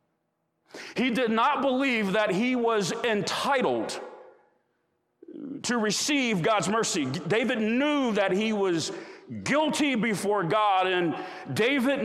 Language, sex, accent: English, male, American